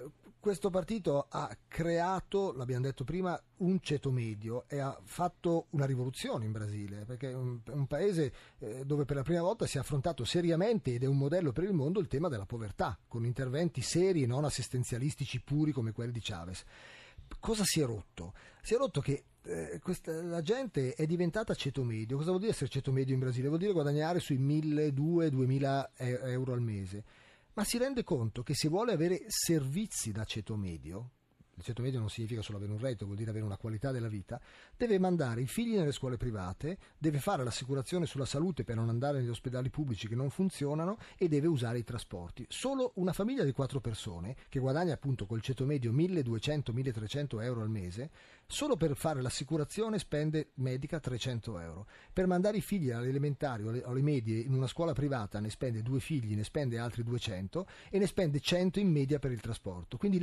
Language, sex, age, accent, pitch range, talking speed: Italian, male, 30-49, native, 120-165 Hz, 190 wpm